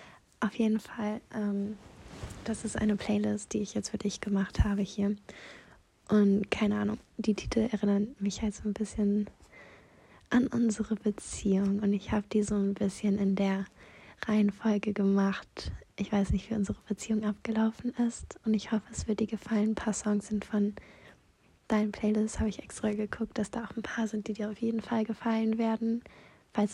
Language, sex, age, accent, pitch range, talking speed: German, female, 20-39, German, 205-220 Hz, 180 wpm